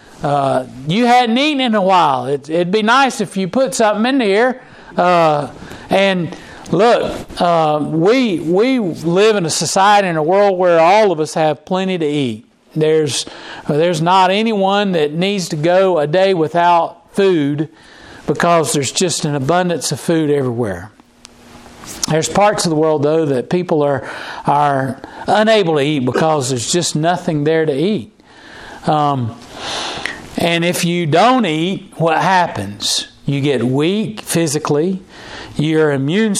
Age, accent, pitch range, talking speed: 50-69, American, 145-185 Hz, 150 wpm